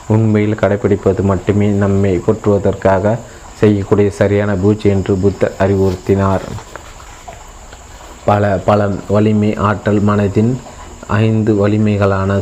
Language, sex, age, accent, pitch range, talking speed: Tamil, male, 30-49, native, 100-105 Hz, 85 wpm